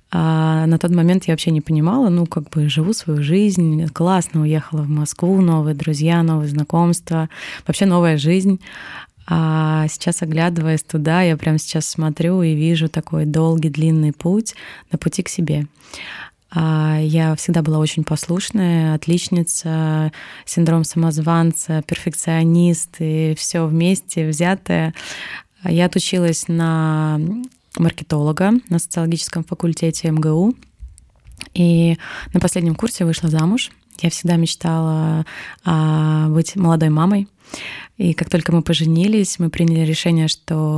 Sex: female